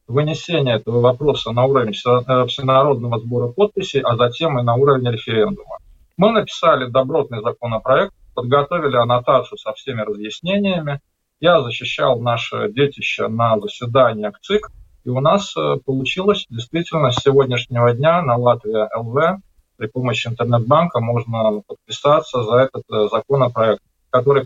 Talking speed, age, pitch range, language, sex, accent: 125 wpm, 20-39, 120-155 Hz, Russian, male, native